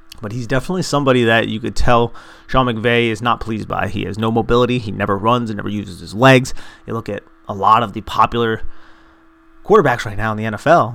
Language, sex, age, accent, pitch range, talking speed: English, male, 30-49, American, 95-120 Hz, 220 wpm